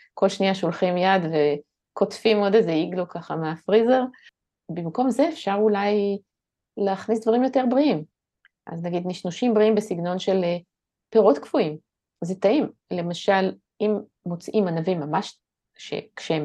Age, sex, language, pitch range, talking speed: 30-49, female, Hebrew, 165-210 Hz, 125 wpm